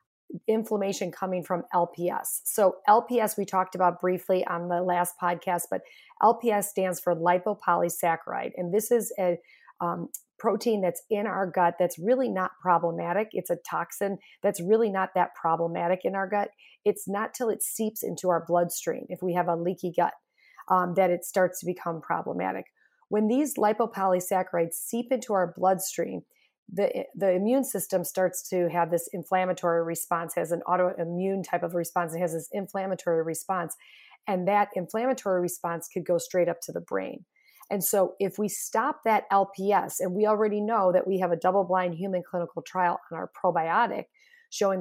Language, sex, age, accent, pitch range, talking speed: English, female, 30-49, American, 175-205 Hz, 170 wpm